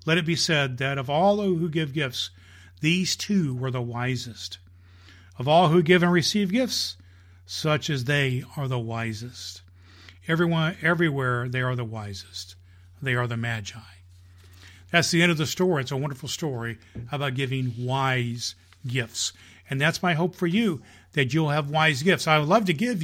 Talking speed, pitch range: 175 wpm, 115-170 Hz